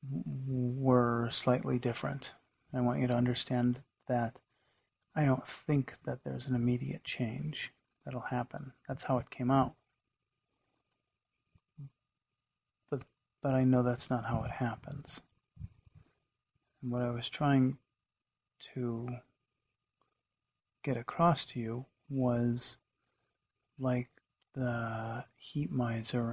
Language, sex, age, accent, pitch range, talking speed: English, male, 40-59, American, 125-140 Hz, 110 wpm